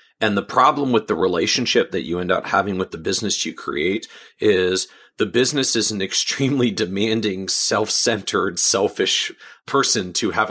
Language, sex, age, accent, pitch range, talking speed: English, male, 40-59, American, 90-110 Hz, 160 wpm